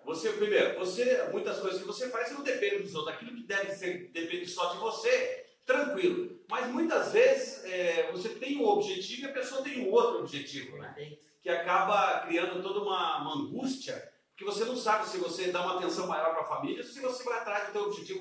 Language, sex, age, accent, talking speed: Portuguese, male, 40-59, Brazilian, 220 wpm